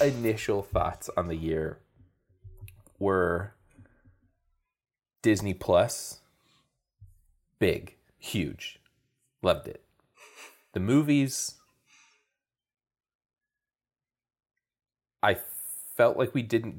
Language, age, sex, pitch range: English, 30-49, male, 90-135 Hz